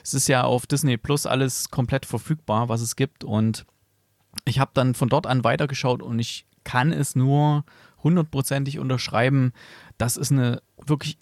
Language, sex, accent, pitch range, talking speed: German, male, German, 120-140 Hz, 165 wpm